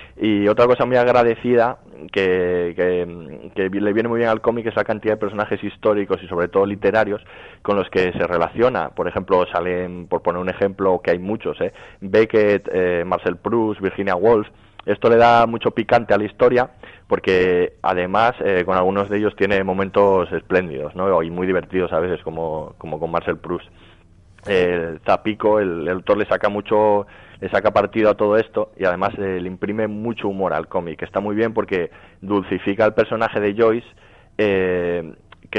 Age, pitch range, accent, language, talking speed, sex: 20-39, 90-105 Hz, Spanish, Spanish, 185 wpm, male